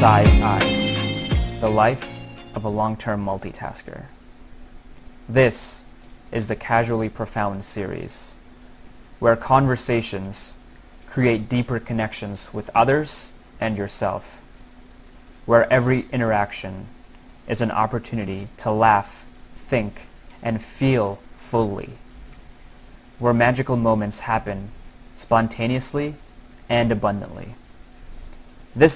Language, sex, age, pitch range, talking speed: English, male, 20-39, 100-125 Hz, 90 wpm